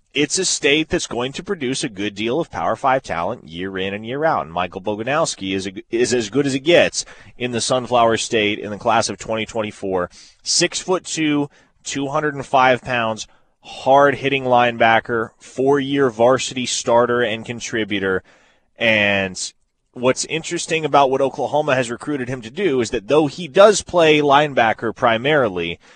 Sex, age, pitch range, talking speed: male, 30-49, 110-135 Hz, 165 wpm